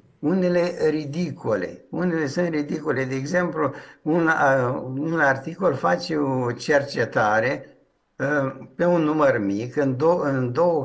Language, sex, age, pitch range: Romanian, male, 60-79, 130-175 Hz